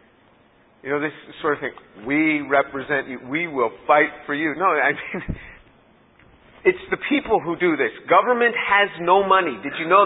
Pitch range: 150-195 Hz